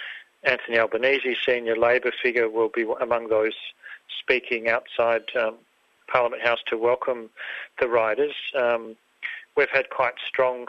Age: 40-59